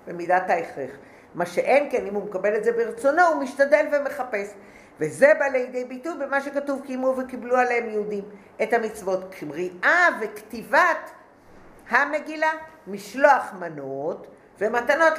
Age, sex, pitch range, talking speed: 50-69, female, 190-275 Hz, 125 wpm